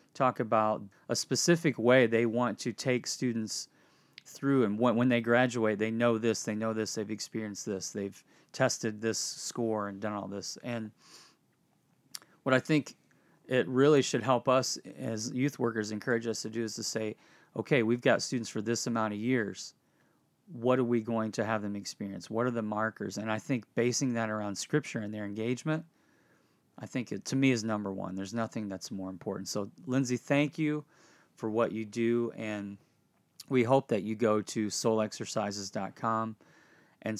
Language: English